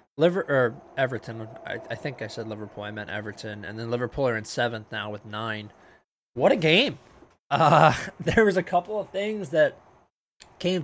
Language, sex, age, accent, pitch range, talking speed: English, male, 20-39, American, 115-145 Hz, 185 wpm